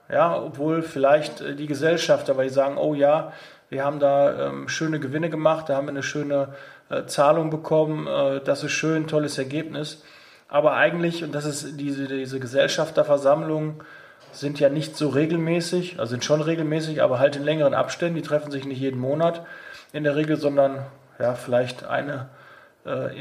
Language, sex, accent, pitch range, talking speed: German, male, German, 130-150 Hz, 165 wpm